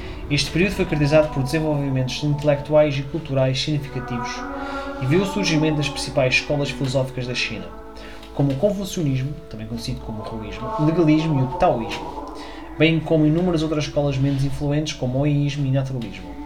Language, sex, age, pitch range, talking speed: Portuguese, male, 20-39, 130-160 Hz, 165 wpm